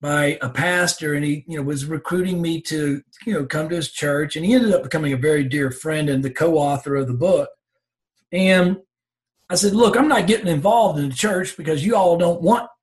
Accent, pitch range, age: American, 145-190 Hz, 50-69